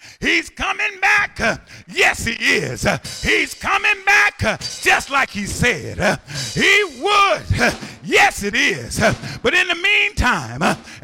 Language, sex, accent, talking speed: English, male, American, 160 wpm